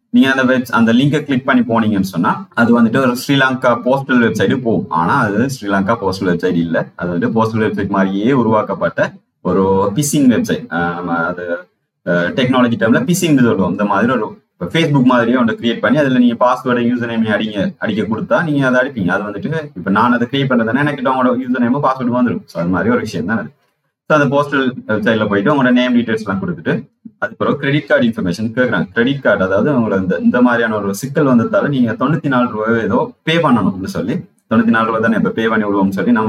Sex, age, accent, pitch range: male, 30-49, native, 110-140 Hz